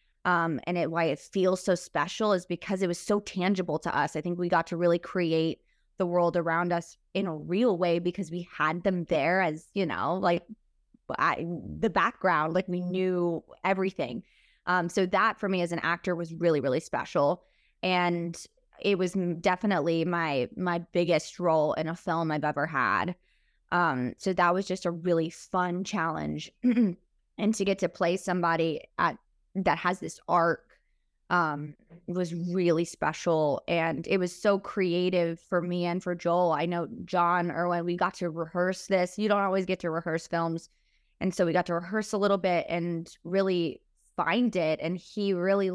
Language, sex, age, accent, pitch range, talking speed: English, female, 20-39, American, 165-185 Hz, 185 wpm